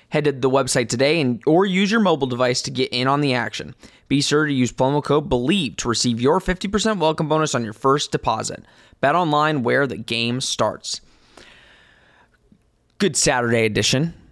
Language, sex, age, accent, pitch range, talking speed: English, male, 20-39, American, 125-155 Hz, 180 wpm